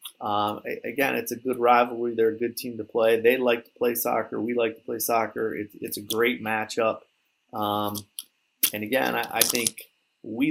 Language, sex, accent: English, male, American